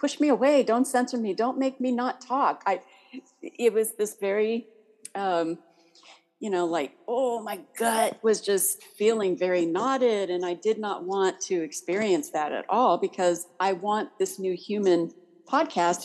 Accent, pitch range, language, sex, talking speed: American, 185-255 Hz, English, female, 170 wpm